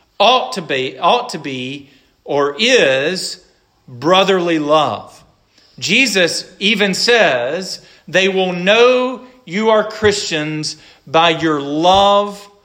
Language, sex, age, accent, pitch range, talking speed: English, male, 40-59, American, 160-205 Hz, 105 wpm